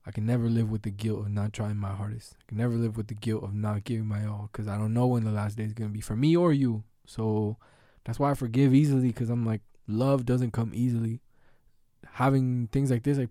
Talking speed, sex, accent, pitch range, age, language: 260 wpm, male, American, 110-130 Hz, 20-39, English